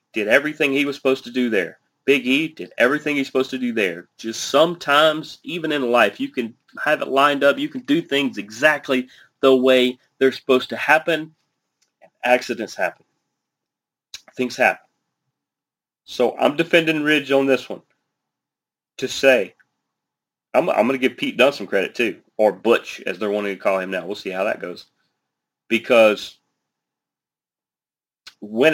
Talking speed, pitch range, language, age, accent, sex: 165 wpm, 115-145 Hz, English, 30-49, American, male